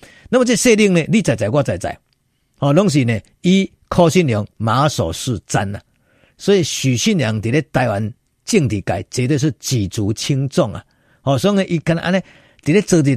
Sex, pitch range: male, 115-170 Hz